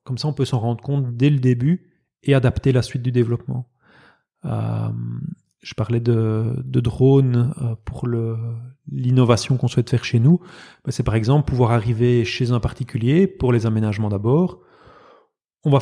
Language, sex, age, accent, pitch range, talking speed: French, male, 30-49, French, 115-135 Hz, 165 wpm